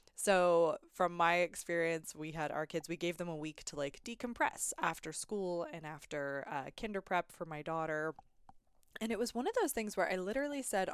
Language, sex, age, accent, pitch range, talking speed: English, female, 20-39, American, 160-220 Hz, 205 wpm